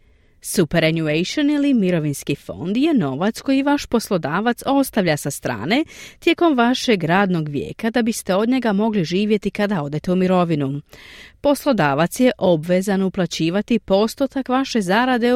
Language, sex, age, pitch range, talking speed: Croatian, female, 40-59, 165-250 Hz, 130 wpm